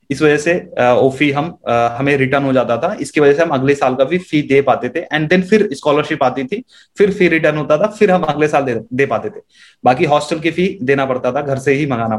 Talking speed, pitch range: 250 wpm, 135-175 Hz